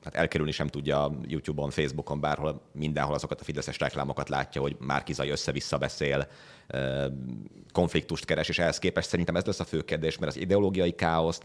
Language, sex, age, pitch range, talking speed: Hungarian, male, 30-49, 75-95 Hz, 160 wpm